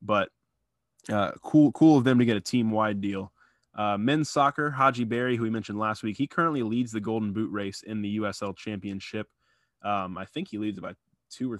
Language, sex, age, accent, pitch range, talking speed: English, male, 20-39, American, 100-120 Hz, 210 wpm